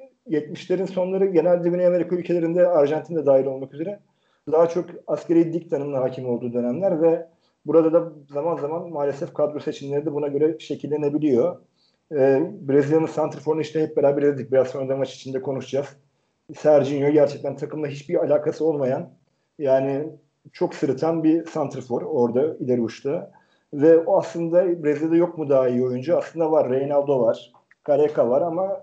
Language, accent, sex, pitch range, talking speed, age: Turkish, native, male, 140-170 Hz, 145 wpm, 40-59